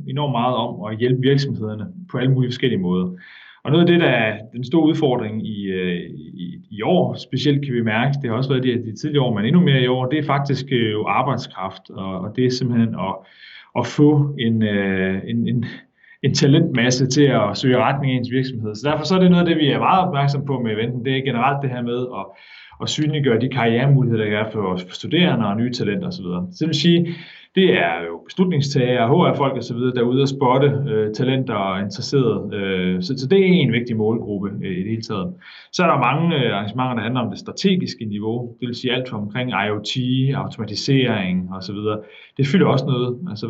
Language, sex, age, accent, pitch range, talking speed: Danish, male, 30-49, native, 110-135 Hz, 205 wpm